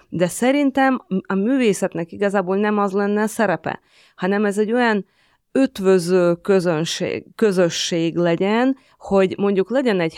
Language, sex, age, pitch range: Hungarian, female, 30-49, 170-210 Hz